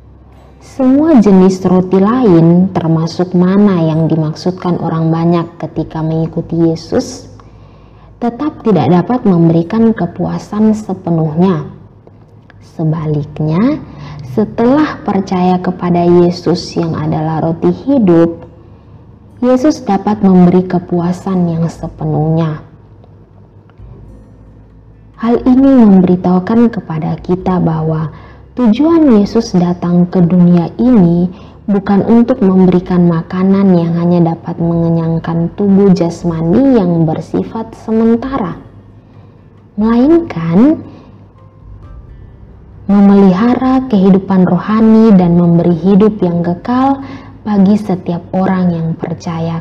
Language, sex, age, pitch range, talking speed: Indonesian, female, 20-39, 160-200 Hz, 90 wpm